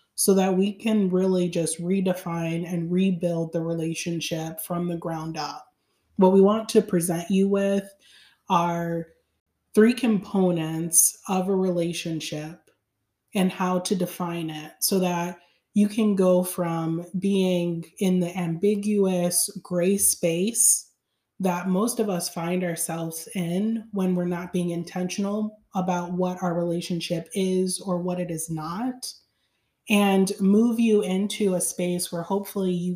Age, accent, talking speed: 30-49, American, 140 wpm